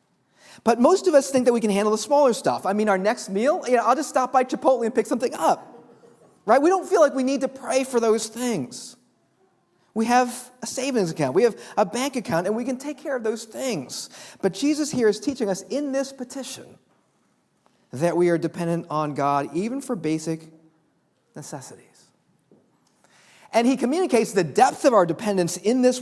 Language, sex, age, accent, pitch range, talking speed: English, male, 40-59, American, 185-255 Hz, 200 wpm